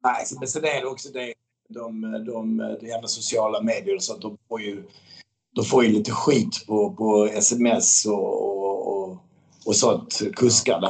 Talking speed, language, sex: 170 wpm, Swedish, male